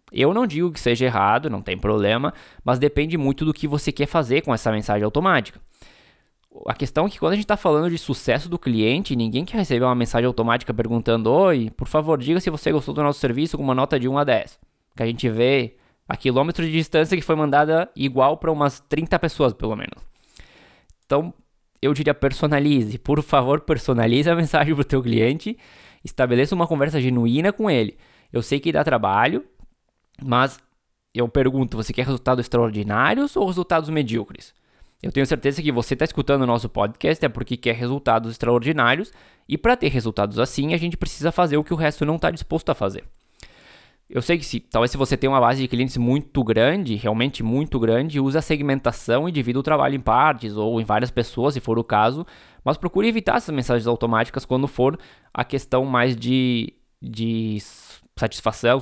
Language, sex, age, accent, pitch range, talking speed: Portuguese, male, 20-39, Brazilian, 120-155 Hz, 195 wpm